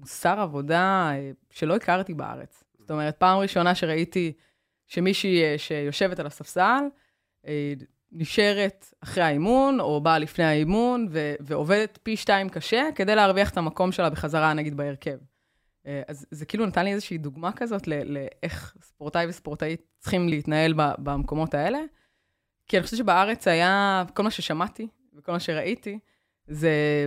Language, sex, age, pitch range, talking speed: Hebrew, female, 20-39, 150-195 Hz, 140 wpm